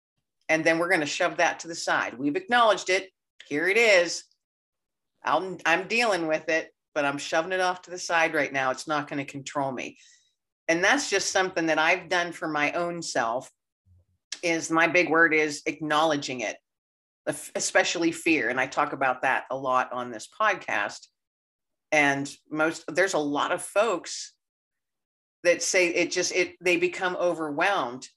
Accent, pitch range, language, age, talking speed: American, 150-185 Hz, English, 50-69, 175 wpm